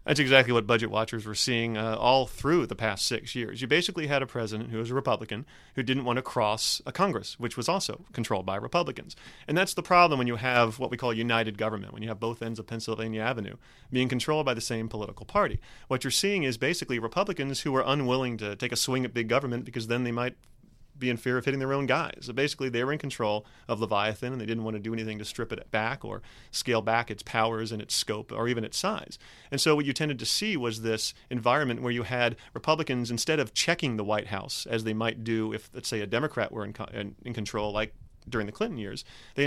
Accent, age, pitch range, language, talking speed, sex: American, 30-49, 110-130 Hz, English, 250 wpm, male